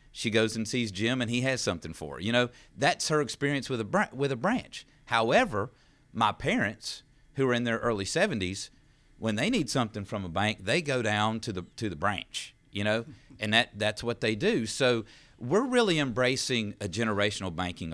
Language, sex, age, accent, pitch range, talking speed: English, male, 40-59, American, 105-135 Hz, 200 wpm